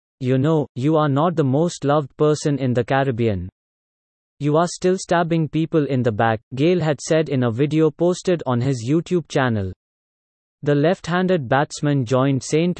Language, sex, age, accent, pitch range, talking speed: English, male, 30-49, Indian, 130-160 Hz, 170 wpm